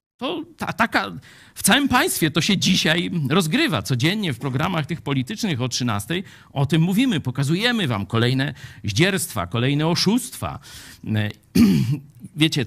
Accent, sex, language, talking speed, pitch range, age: native, male, Polish, 130 wpm, 125-205 Hz, 50-69